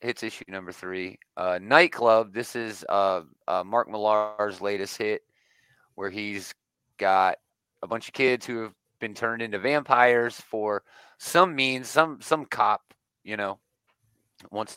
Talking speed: 145 wpm